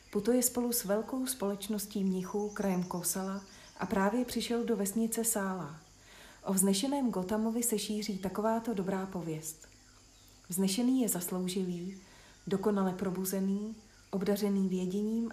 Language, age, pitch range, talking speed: Czech, 40-59, 180-215 Hz, 115 wpm